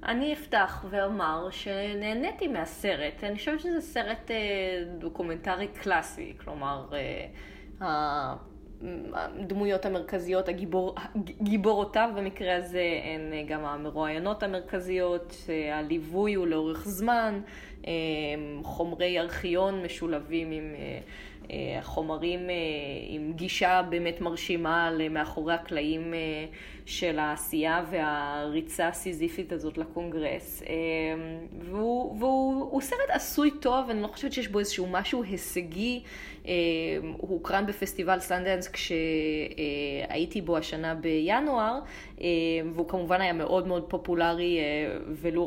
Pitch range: 160-195 Hz